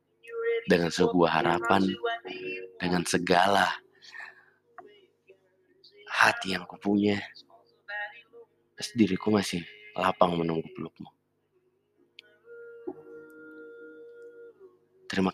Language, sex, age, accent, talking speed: Indonesian, male, 30-49, native, 55 wpm